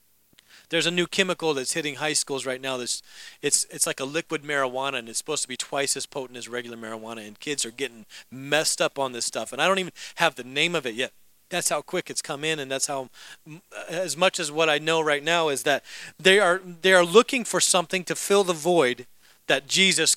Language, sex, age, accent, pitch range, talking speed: English, male, 40-59, American, 155-215 Hz, 235 wpm